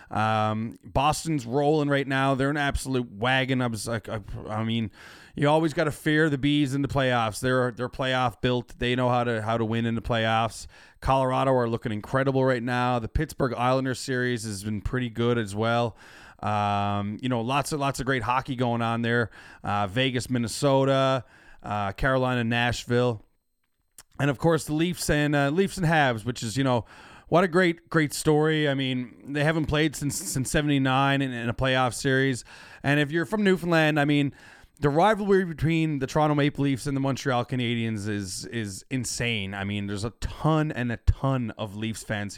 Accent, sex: American, male